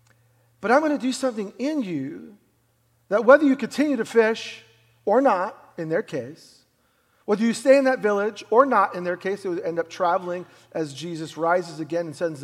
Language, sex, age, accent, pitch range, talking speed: English, male, 40-59, American, 160-235 Hz, 200 wpm